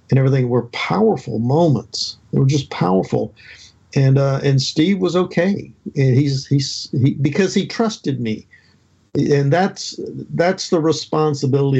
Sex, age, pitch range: male, 50-69, 120-150 Hz